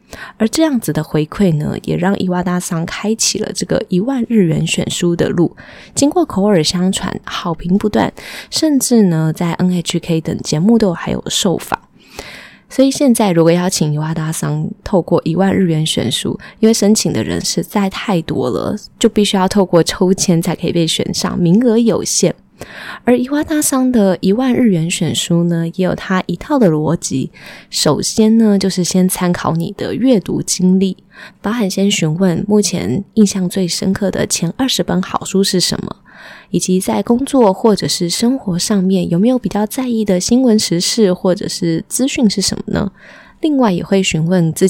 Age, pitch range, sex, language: 20-39, 175-220 Hz, female, Chinese